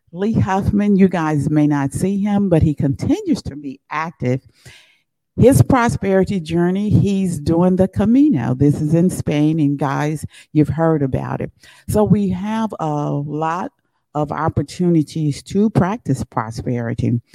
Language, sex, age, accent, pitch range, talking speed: English, female, 50-69, American, 140-170 Hz, 140 wpm